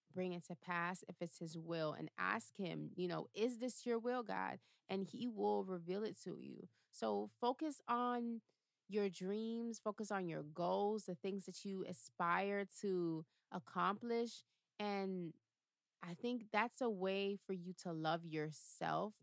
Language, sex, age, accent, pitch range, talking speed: English, female, 30-49, American, 175-220 Hz, 160 wpm